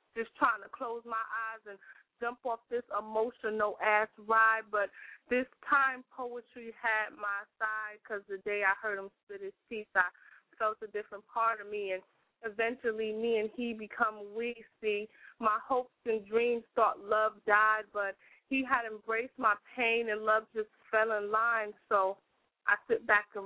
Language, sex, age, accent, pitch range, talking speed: English, female, 20-39, American, 200-230 Hz, 175 wpm